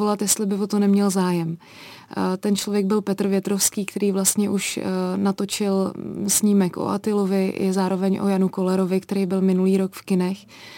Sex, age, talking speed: female, 20-39, 165 wpm